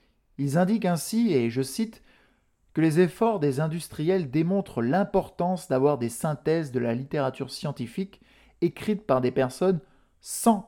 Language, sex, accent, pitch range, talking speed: French, male, French, 125-160 Hz, 140 wpm